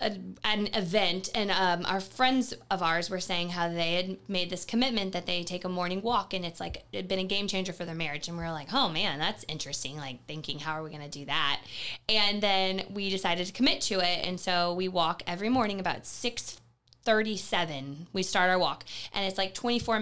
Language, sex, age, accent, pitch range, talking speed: English, female, 20-39, American, 170-200 Hz, 230 wpm